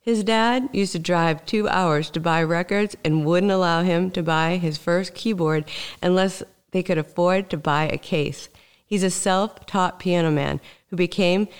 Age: 50-69